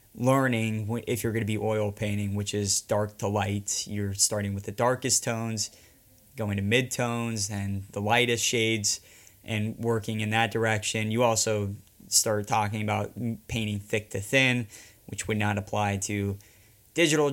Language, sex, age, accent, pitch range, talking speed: English, male, 20-39, American, 105-115 Hz, 165 wpm